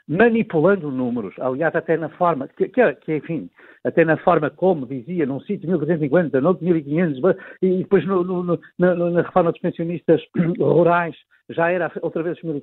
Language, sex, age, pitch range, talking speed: Portuguese, male, 60-79, 160-205 Hz, 160 wpm